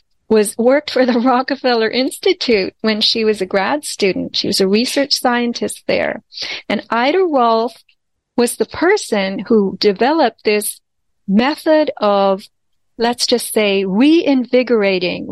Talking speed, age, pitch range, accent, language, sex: 130 wpm, 40-59, 205-260 Hz, American, English, female